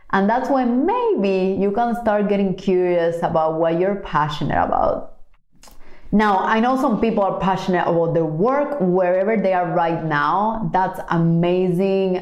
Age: 30-49